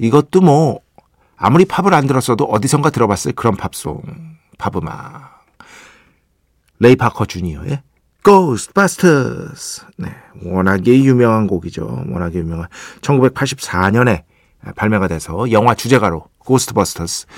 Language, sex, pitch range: Korean, male, 100-150 Hz